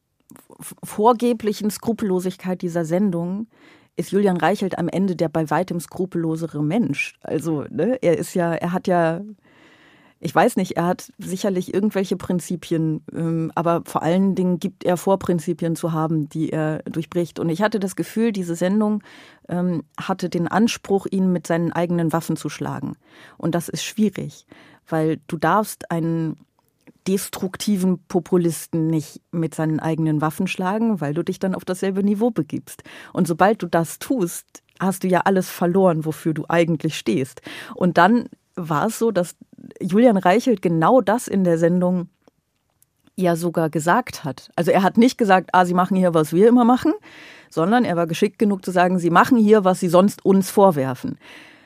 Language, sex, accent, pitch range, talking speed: German, female, German, 165-200 Hz, 165 wpm